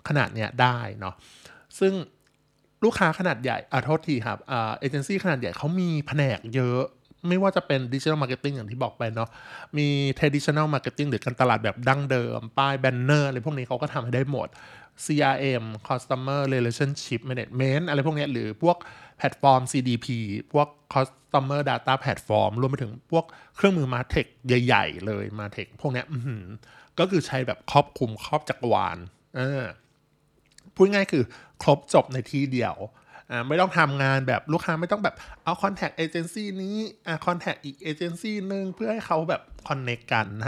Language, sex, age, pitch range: Thai, male, 20-39, 125-160 Hz